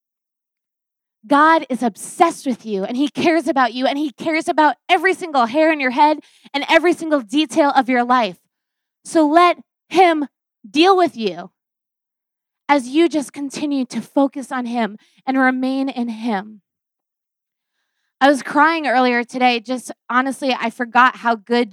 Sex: female